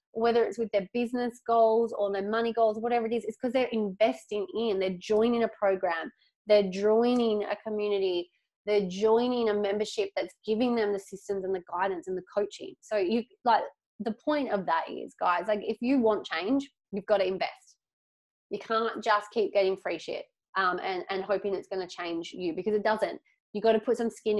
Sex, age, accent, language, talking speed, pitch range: female, 20-39, Australian, English, 205 wpm, 205-240 Hz